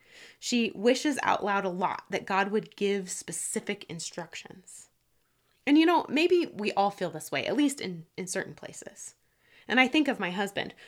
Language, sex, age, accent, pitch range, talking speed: English, female, 20-39, American, 185-260 Hz, 180 wpm